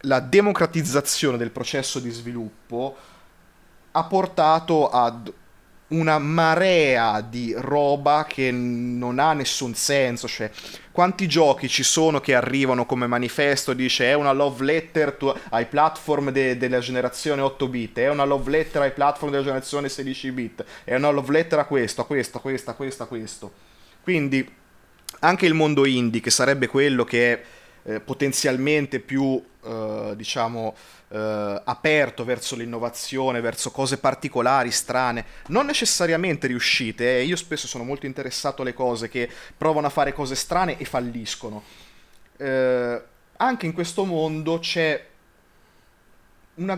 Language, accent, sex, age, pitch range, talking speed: Italian, native, male, 20-39, 120-150 Hz, 145 wpm